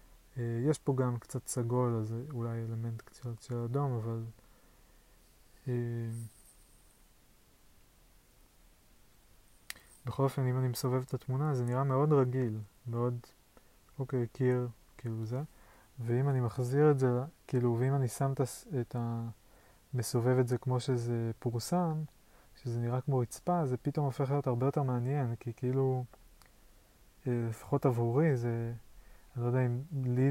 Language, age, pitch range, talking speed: Hebrew, 20-39, 115-130 Hz, 140 wpm